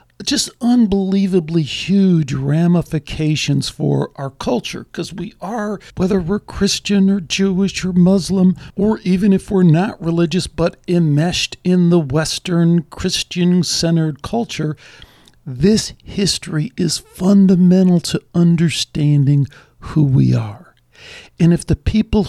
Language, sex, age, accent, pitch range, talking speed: English, male, 60-79, American, 145-195 Hz, 115 wpm